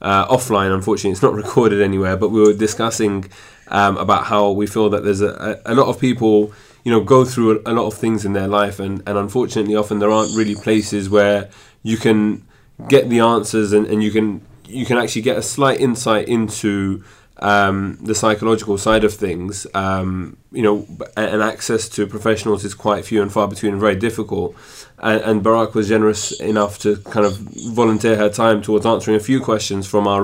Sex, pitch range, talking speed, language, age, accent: male, 105-115 Hz, 200 wpm, English, 20-39, British